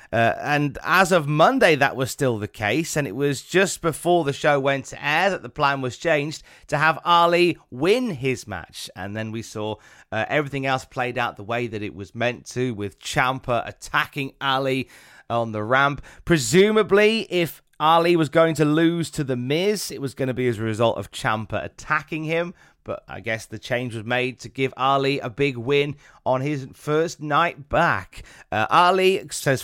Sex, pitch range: male, 115-150 Hz